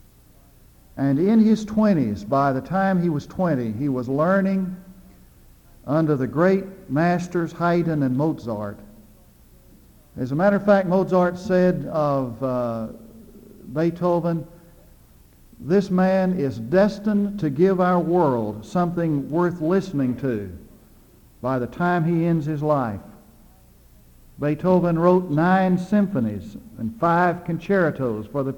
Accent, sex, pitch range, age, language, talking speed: American, male, 120-185 Hz, 60-79, English, 120 wpm